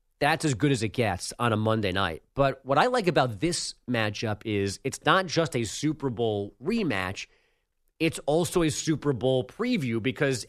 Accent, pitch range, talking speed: American, 120-155 Hz, 185 wpm